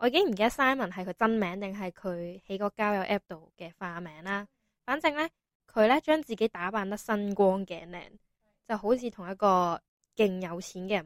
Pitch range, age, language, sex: 180-225 Hz, 10-29, Chinese, female